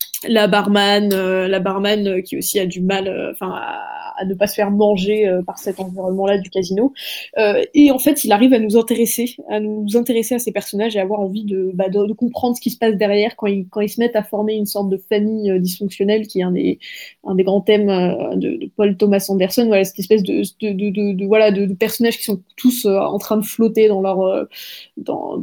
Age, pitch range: 20-39, 195-225 Hz